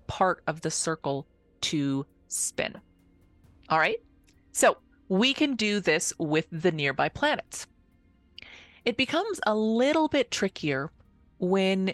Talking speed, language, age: 120 wpm, English, 30-49